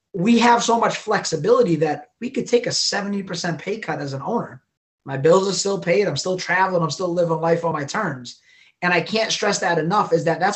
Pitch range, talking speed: 160-190 Hz, 225 wpm